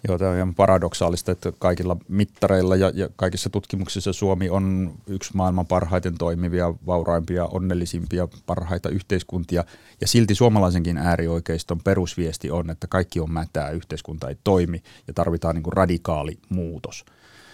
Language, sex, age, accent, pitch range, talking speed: Finnish, male, 30-49, native, 85-95 Hz, 130 wpm